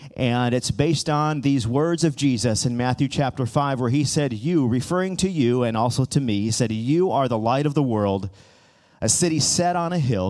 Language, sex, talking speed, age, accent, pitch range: English, male, 220 wpm, 40-59, American, 110-140 Hz